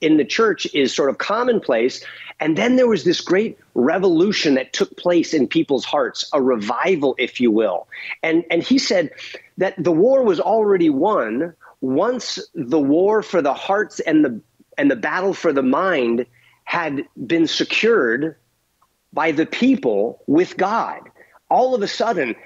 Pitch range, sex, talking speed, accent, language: 155-260 Hz, male, 160 wpm, American, English